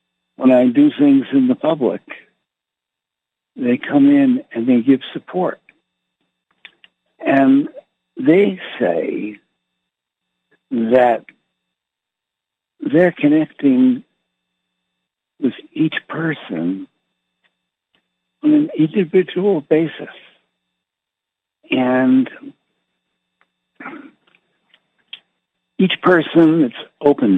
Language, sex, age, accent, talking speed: English, male, 60-79, American, 70 wpm